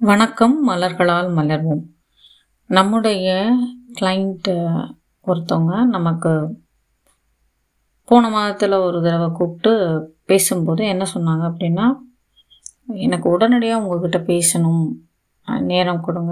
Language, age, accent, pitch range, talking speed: Tamil, 30-49, native, 165-195 Hz, 80 wpm